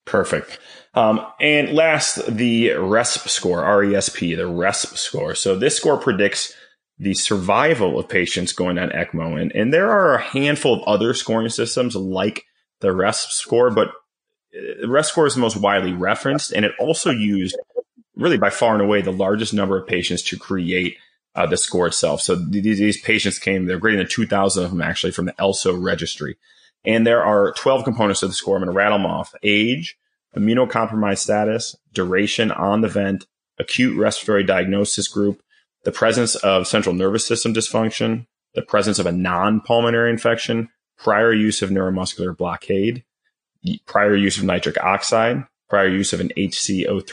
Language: English